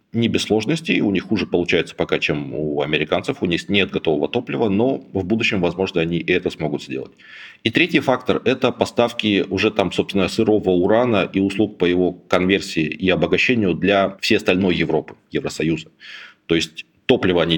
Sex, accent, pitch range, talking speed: male, native, 85-105 Hz, 175 wpm